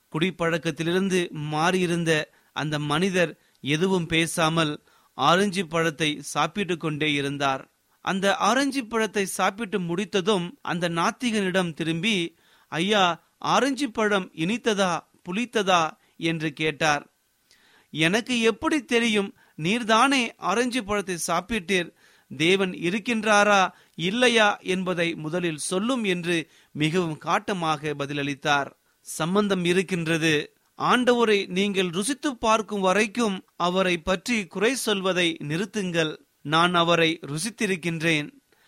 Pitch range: 165-215 Hz